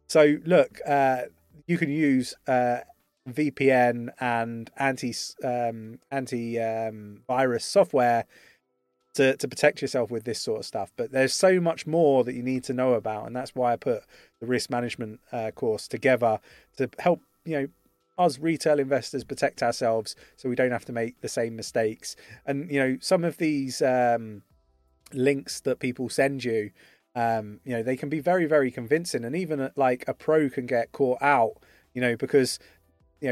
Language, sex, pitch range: English, male, 115-140 Hz